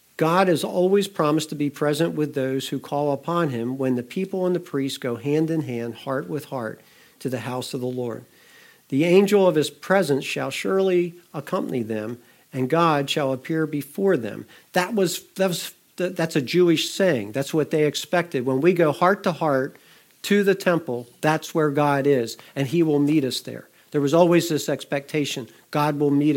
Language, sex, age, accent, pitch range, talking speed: English, male, 50-69, American, 135-175 Hz, 195 wpm